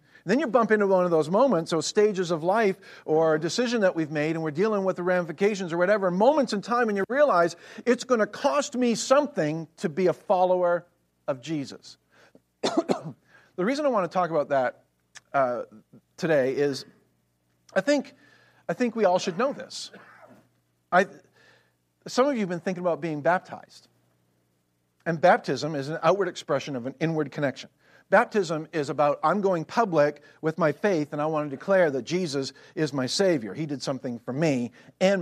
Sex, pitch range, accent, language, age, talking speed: male, 130-190 Hz, American, English, 50-69, 185 wpm